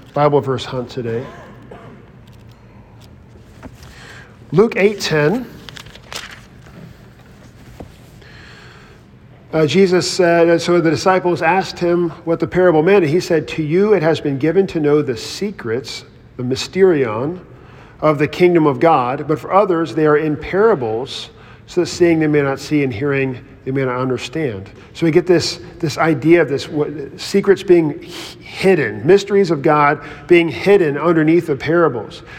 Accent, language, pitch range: American, English, 140-180 Hz